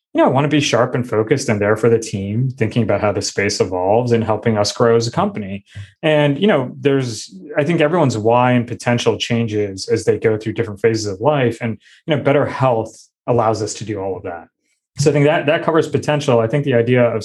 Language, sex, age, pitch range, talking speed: English, male, 20-39, 115-145 Hz, 245 wpm